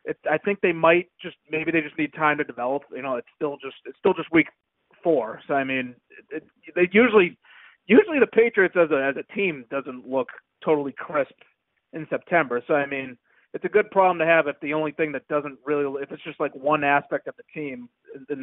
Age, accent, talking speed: 30-49, American, 230 wpm